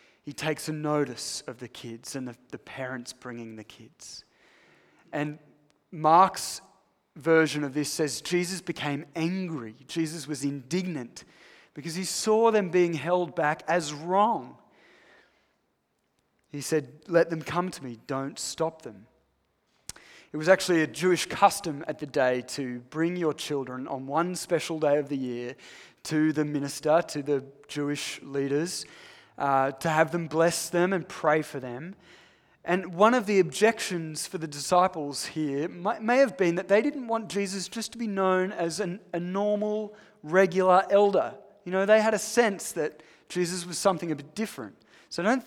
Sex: male